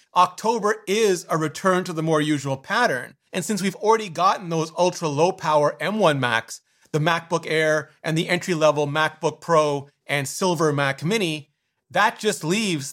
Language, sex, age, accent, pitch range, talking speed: English, male, 30-49, American, 150-195 Hz, 165 wpm